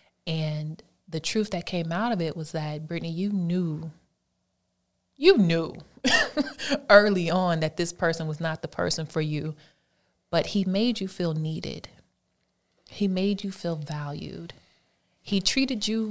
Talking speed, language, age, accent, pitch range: 150 wpm, English, 30-49, American, 155-195 Hz